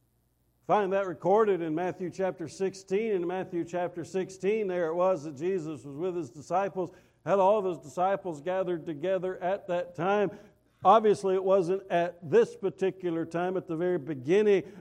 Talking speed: 165 wpm